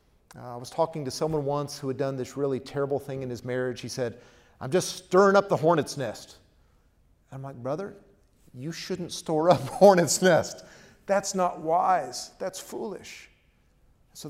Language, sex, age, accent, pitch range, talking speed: English, male, 40-59, American, 120-145 Hz, 170 wpm